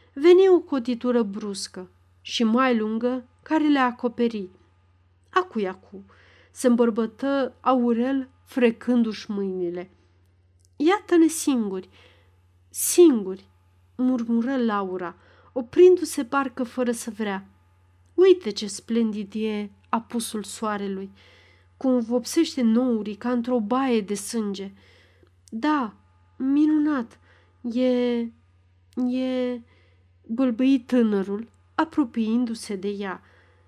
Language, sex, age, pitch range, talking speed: Romanian, female, 40-59, 190-265 Hz, 85 wpm